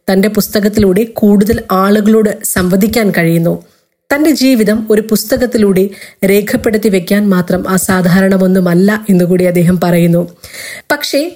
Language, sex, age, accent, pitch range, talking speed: Malayalam, female, 30-49, native, 185-220 Hz, 95 wpm